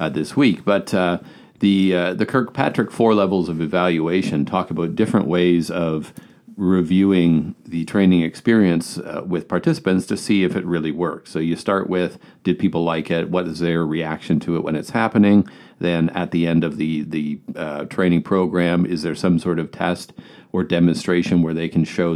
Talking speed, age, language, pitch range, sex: 190 wpm, 50-69, English, 80-95 Hz, male